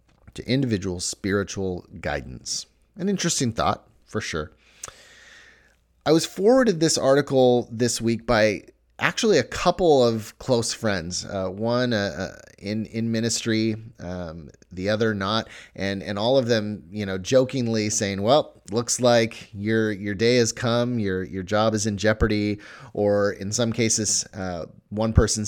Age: 30-49